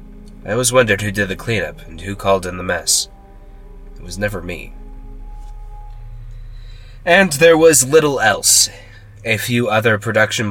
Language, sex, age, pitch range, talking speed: English, male, 20-39, 95-120 Hz, 150 wpm